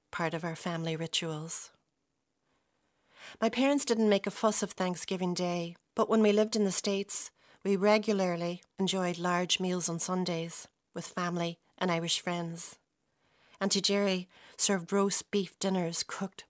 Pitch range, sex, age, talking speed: 175-200 Hz, female, 40-59, 145 wpm